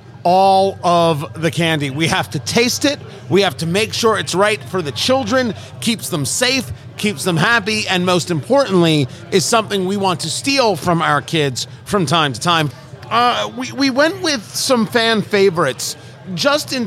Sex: male